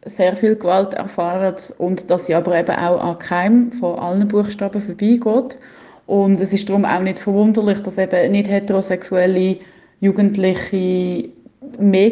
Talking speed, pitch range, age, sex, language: 145 wpm, 185-220 Hz, 30-49, female, German